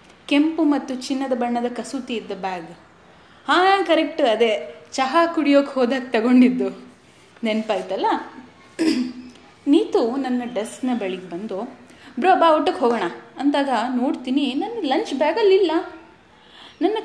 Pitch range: 220-300 Hz